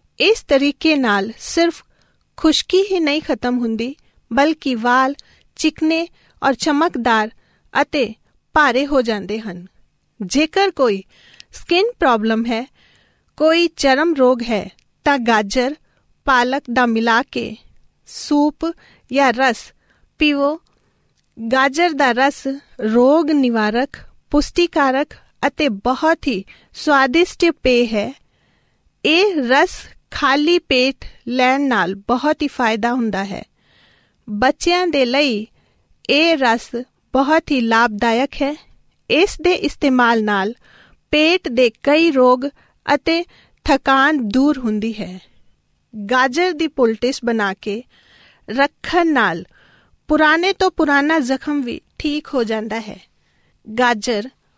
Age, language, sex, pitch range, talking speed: 40-59, Punjabi, female, 235-305 Hz, 100 wpm